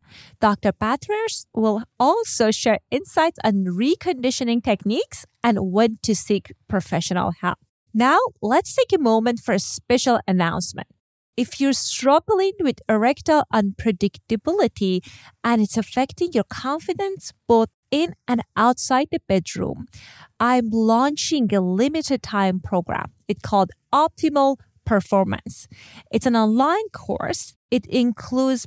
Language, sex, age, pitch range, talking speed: English, female, 30-49, 195-260 Hz, 120 wpm